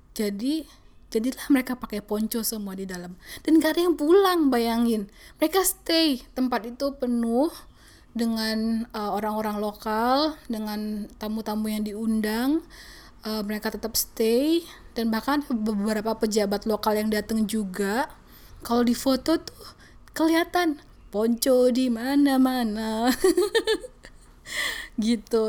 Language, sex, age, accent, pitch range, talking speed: Indonesian, female, 20-39, native, 215-255 Hz, 110 wpm